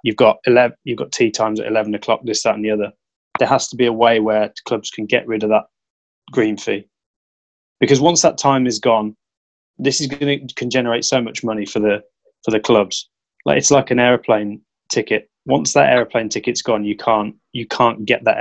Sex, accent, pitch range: male, British, 105-125 Hz